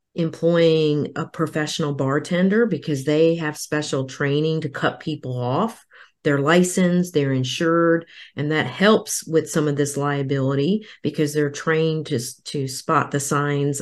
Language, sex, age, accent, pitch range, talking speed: English, female, 40-59, American, 145-175 Hz, 145 wpm